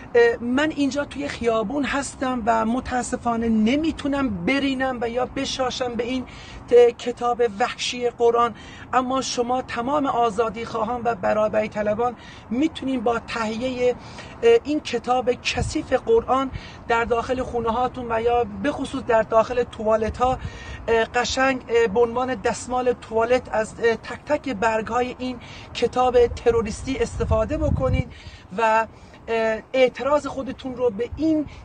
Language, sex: Persian, male